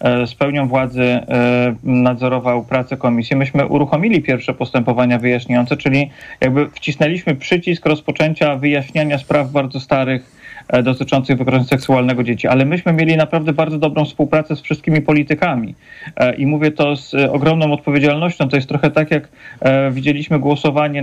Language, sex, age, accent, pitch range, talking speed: Polish, male, 30-49, native, 130-145 Hz, 135 wpm